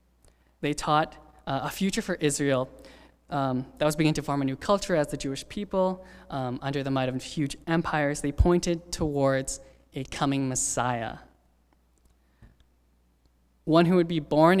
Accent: American